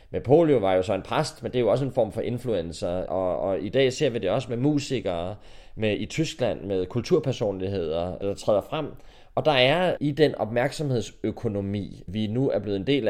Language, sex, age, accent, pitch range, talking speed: Danish, male, 20-39, native, 110-135 Hz, 205 wpm